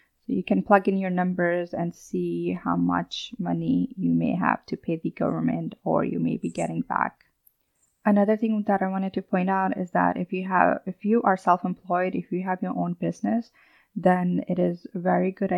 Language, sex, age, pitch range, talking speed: English, female, 20-39, 170-200 Hz, 195 wpm